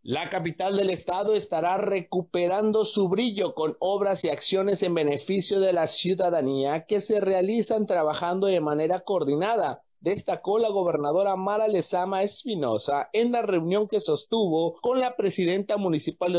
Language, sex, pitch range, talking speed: Spanish, male, 155-205 Hz, 145 wpm